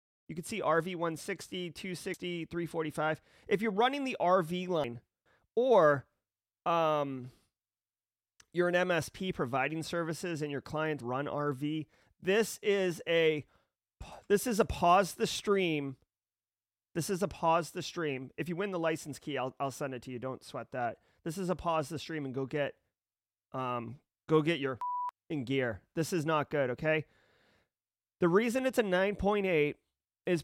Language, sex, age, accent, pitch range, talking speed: English, male, 30-49, American, 135-180 Hz, 160 wpm